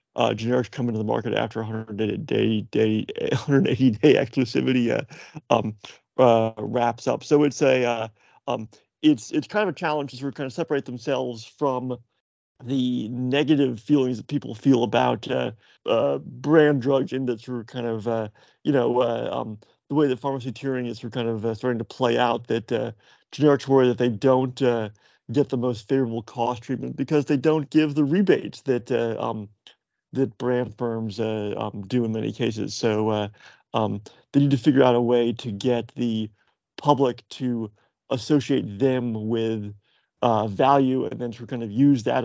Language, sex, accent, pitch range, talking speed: English, male, American, 115-135 Hz, 190 wpm